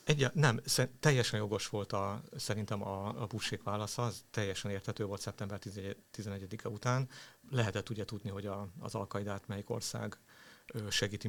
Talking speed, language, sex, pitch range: 145 wpm, Hungarian, male, 100-115 Hz